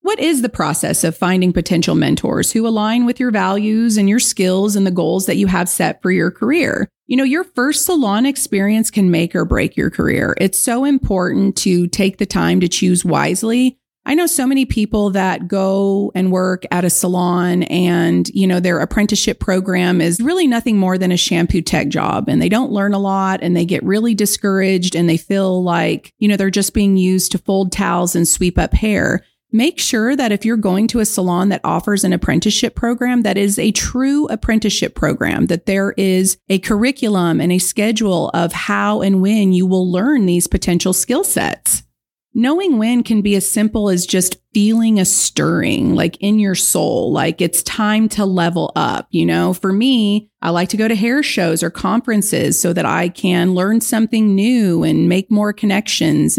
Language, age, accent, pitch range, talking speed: English, 30-49, American, 185-235 Hz, 200 wpm